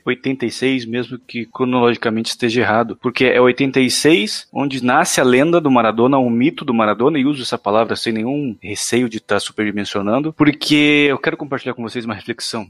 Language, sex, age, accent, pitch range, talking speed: Portuguese, male, 20-39, Brazilian, 110-135 Hz, 180 wpm